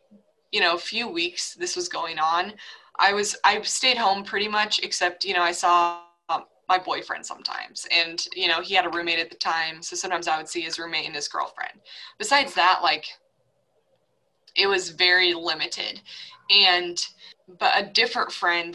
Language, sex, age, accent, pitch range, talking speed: English, female, 20-39, American, 175-225 Hz, 180 wpm